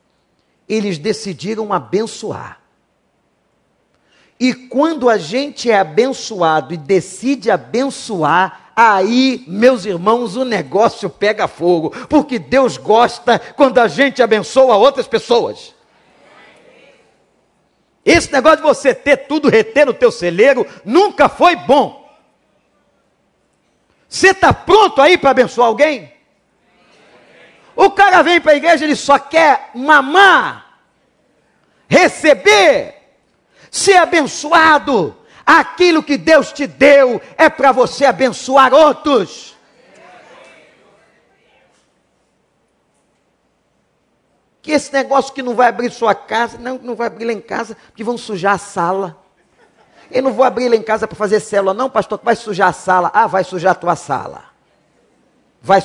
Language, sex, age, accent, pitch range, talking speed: Portuguese, male, 50-69, Brazilian, 205-285 Hz, 125 wpm